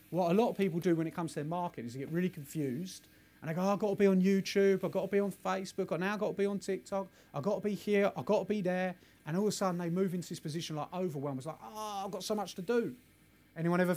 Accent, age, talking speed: British, 30-49, 315 wpm